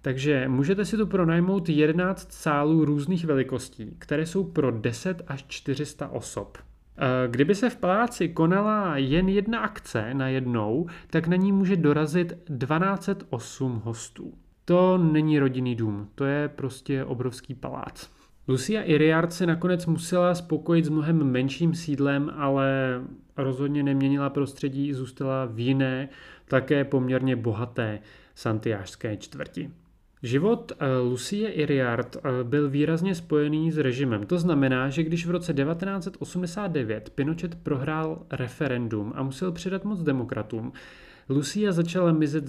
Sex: male